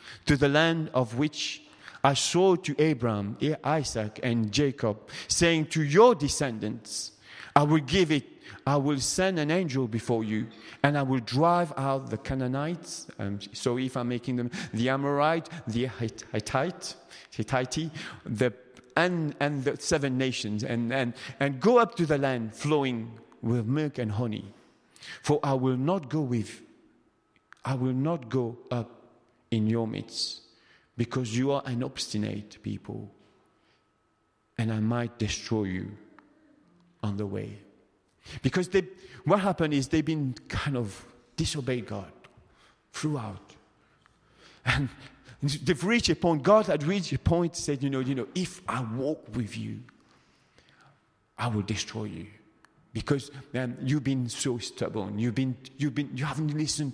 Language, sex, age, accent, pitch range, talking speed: English, male, 40-59, French, 115-150 Hz, 145 wpm